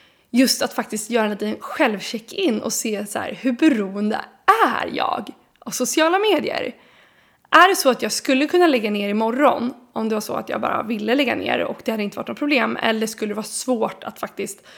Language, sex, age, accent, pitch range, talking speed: Swedish, female, 20-39, native, 215-265 Hz, 205 wpm